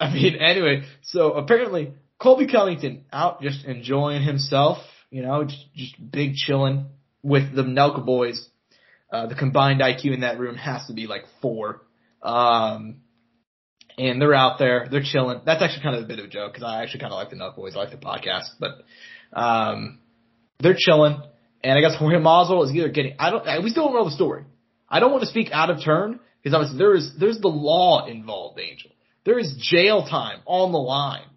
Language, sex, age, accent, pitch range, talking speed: English, male, 20-39, American, 135-180 Hz, 205 wpm